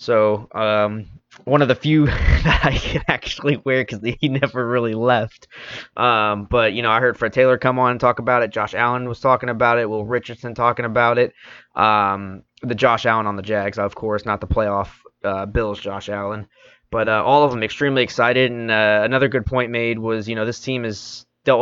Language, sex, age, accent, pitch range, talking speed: English, male, 20-39, American, 110-130 Hz, 215 wpm